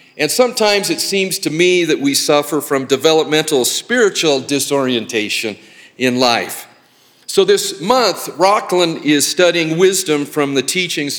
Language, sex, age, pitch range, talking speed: English, male, 50-69, 140-180 Hz, 135 wpm